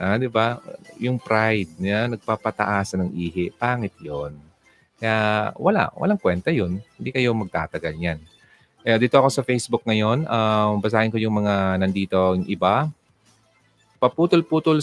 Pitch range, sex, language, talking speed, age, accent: 95-120 Hz, male, Filipino, 145 wpm, 30-49, native